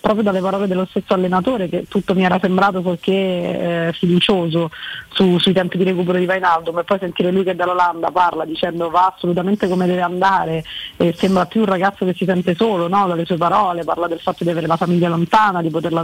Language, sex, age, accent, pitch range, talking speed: Italian, female, 20-39, native, 180-205 Hz, 215 wpm